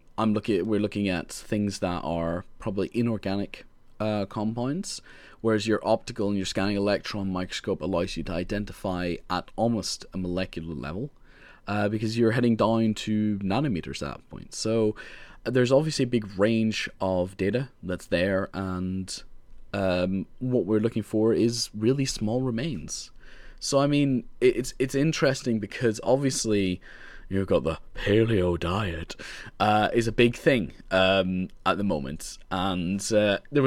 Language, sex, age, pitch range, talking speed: English, male, 20-39, 95-120 Hz, 150 wpm